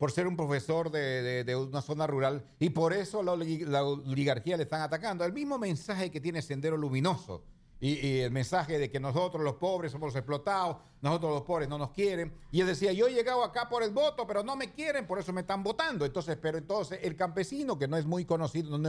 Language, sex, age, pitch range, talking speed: English, male, 50-69, 140-190 Hz, 230 wpm